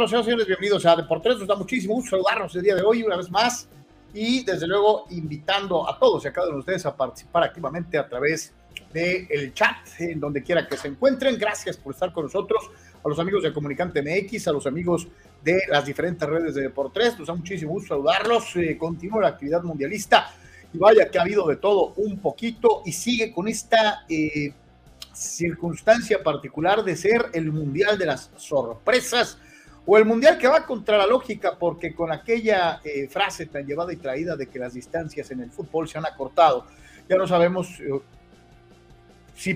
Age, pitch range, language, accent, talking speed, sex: 40-59, 145-200 Hz, Spanish, Mexican, 195 wpm, male